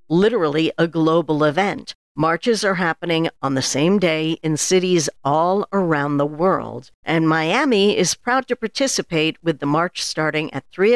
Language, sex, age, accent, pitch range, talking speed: English, female, 60-79, American, 150-195 Hz, 160 wpm